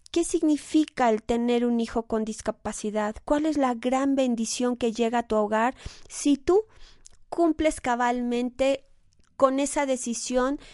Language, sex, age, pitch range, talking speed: Spanish, female, 30-49, 230-275 Hz, 140 wpm